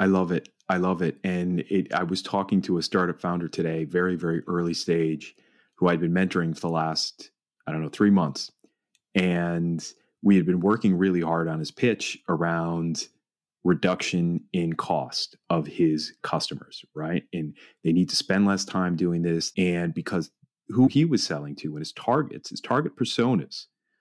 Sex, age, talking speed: male, 30-49, 175 wpm